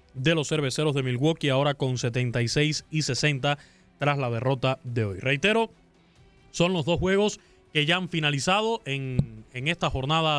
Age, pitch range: 20-39, 145-180 Hz